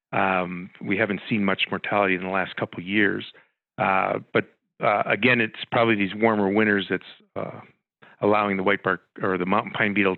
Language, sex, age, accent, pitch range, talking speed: English, male, 40-59, American, 95-120 Hz, 190 wpm